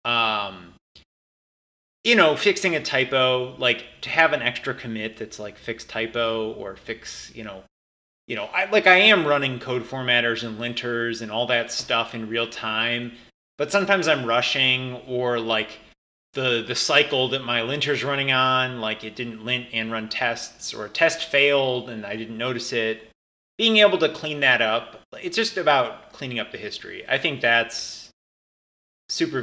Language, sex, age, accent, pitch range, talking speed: English, male, 30-49, American, 115-145 Hz, 175 wpm